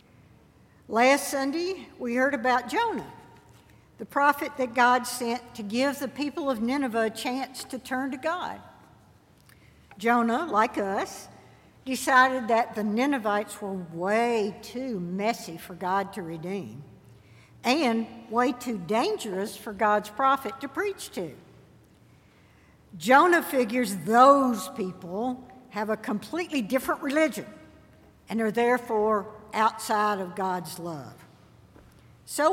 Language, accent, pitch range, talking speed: English, American, 210-275 Hz, 120 wpm